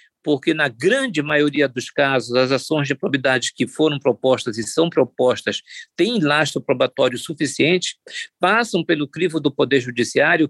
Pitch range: 135-180 Hz